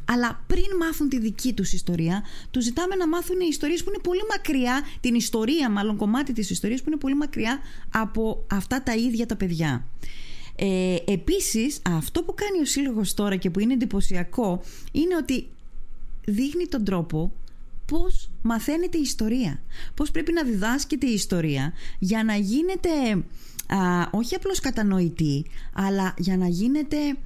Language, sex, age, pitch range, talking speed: Greek, female, 20-39, 180-255 Hz, 150 wpm